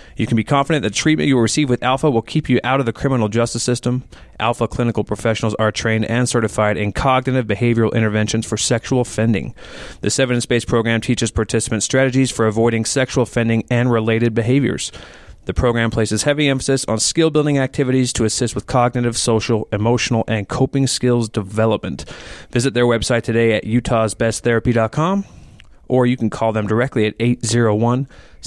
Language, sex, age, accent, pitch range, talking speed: English, male, 30-49, American, 110-130 Hz, 170 wpm